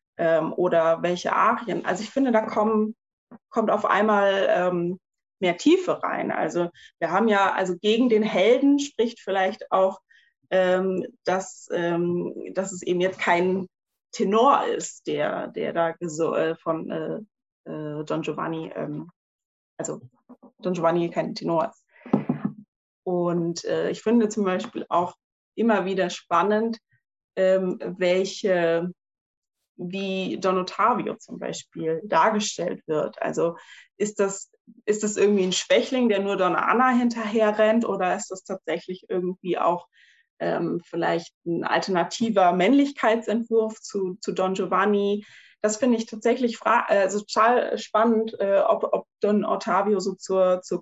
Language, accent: German, German